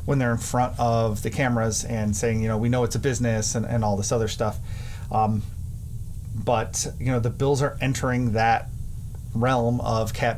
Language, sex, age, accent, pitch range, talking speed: English, male, 30-49, American, 110-125 Hz, 195 wpm